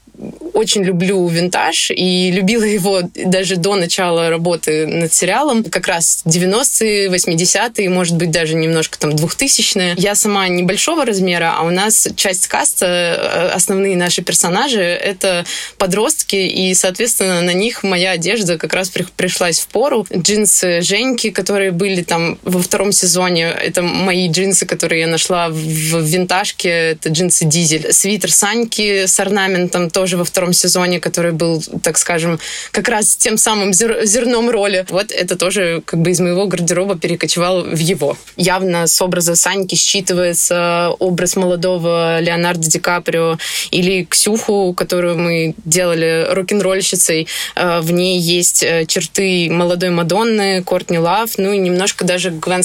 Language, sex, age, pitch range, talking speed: Russian, female, 20-39, 170-195 Hz, 140 wpm